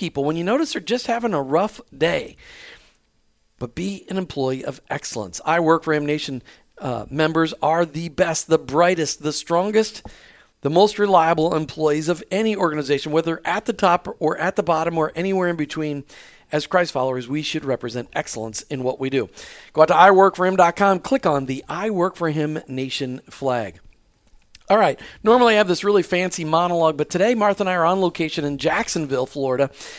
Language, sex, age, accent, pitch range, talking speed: English, male, 40-59, American, 155-210 Hz, 185 wpm